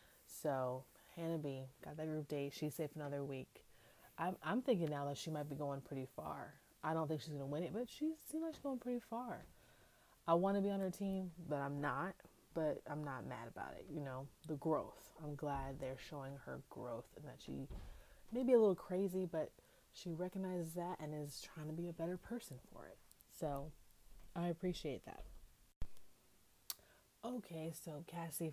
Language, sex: English, female